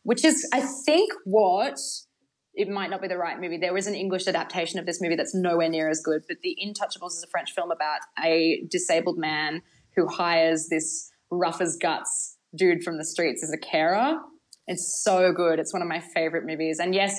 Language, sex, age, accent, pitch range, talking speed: English, female, 20-39, Australian, 170-230 Hz, 210 wpm